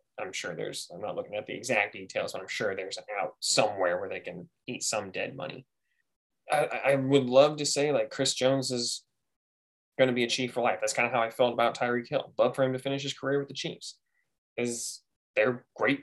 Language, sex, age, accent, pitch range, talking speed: English, male, 10-29, American, 120-145 Hz, 240 wpm